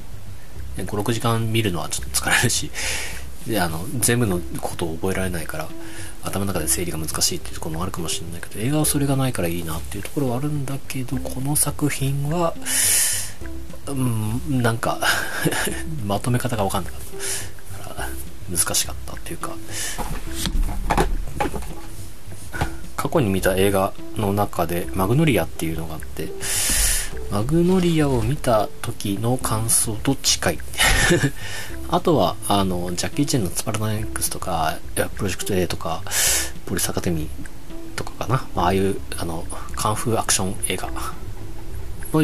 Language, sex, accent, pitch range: Japanese, male, native, 90-120 Hz